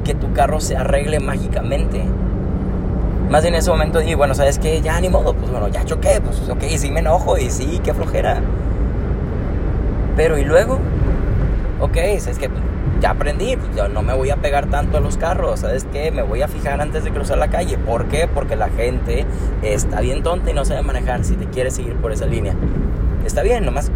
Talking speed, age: 210 wpm, 20-39